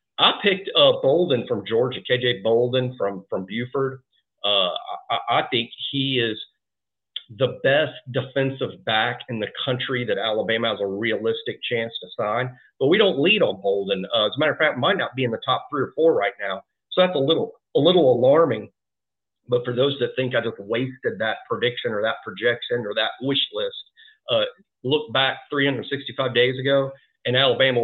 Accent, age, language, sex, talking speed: American, 50-69, English, male, 190 wpm